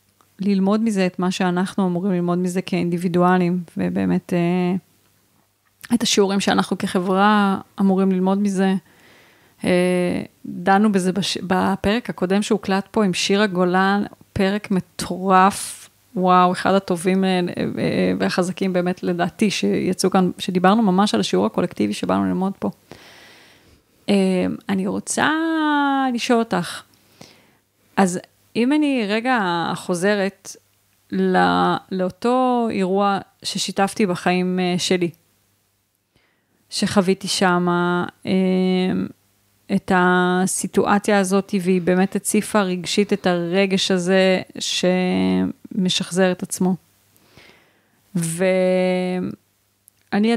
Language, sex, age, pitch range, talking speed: Hebrew, female, 30-49, 180-200 Hz, 90 wpm